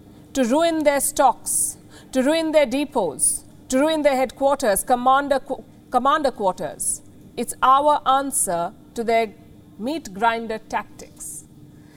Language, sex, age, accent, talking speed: English, female, 50-69, Indian, 115 wpm